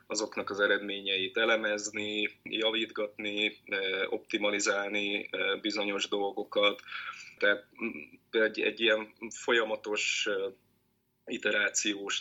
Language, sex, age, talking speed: Hungarian, male, 20-39, 70 wpm